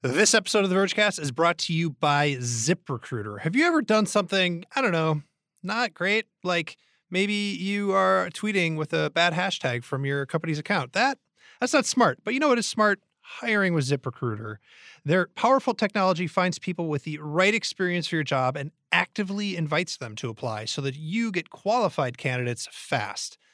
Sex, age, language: male, 30-49, English